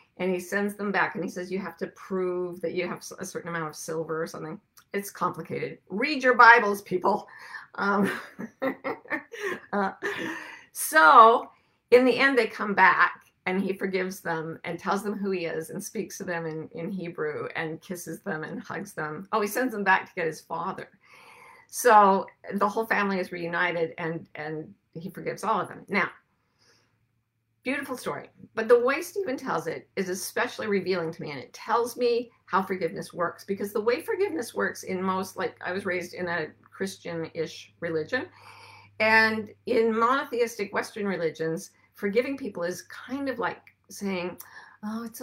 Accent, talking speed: American, 175 wpm